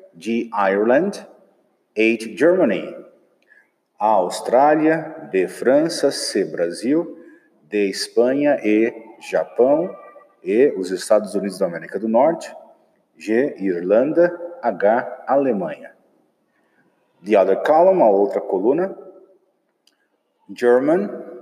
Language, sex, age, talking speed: English, male, 50-69, 90 wpm